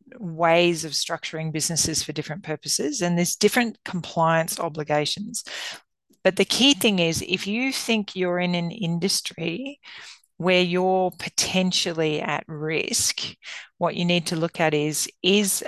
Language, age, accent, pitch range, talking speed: English, 40-59, Australian, 150-185 Hz, 140 wpm